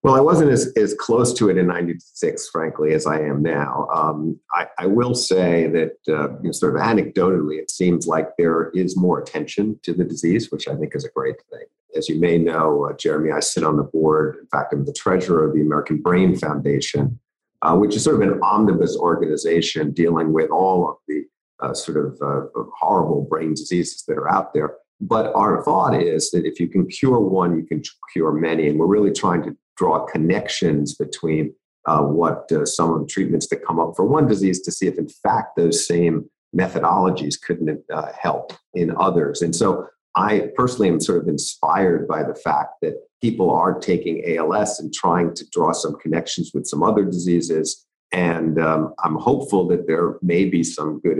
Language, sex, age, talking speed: English, male, 50-69, 200 wpm